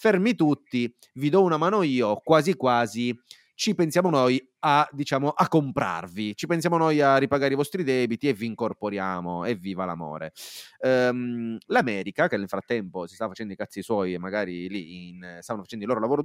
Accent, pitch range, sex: native, 105-145 Hz, male